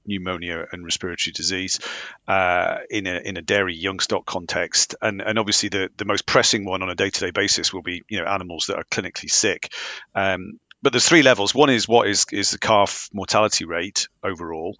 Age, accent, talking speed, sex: 40-59, British, 200 wpm, male